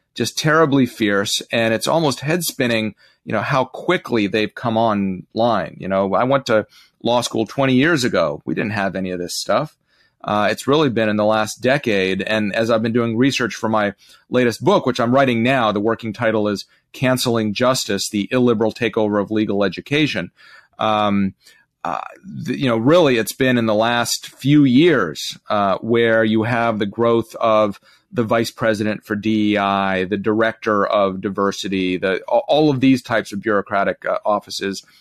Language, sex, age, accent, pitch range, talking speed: English, male, 30-49, American, 105-130 Hz, 175 wpm